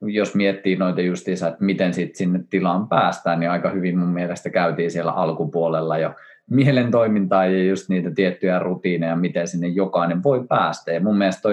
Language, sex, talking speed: Finnish, male, 170 wpm